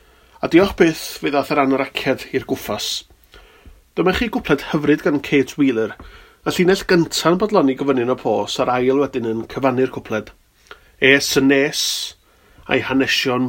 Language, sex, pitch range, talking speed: English, male, 125-160 Hz, 150 wpm